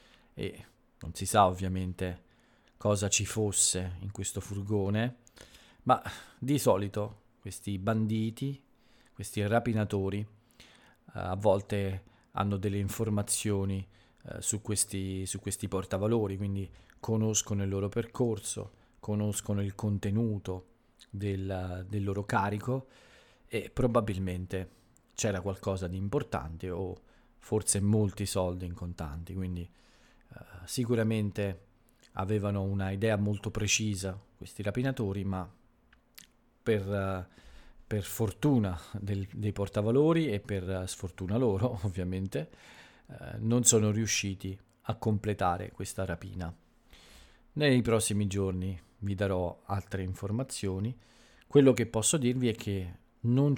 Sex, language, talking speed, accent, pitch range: male, Italian, 105 wpm, native, 95-115 Hz